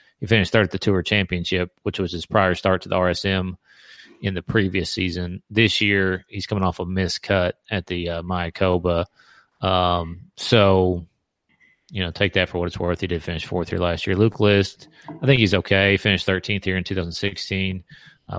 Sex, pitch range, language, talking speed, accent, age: male, 90-105 Hz, English, 195 wpm, American, 30-49